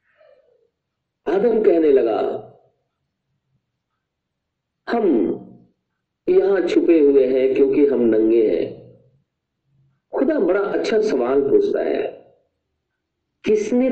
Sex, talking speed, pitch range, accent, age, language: male, 80 wpm, 290-410 Hz, native, 50-69, Hindi